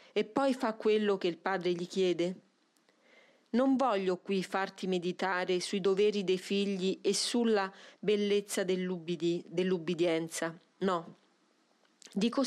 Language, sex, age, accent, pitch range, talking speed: Italian, female, 40-59, native, 185-255 Hz, 115 wpm